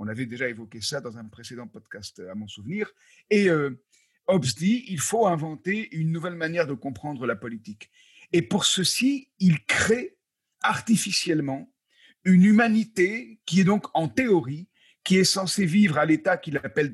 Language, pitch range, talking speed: French, 145-210 Hz, 165 wpm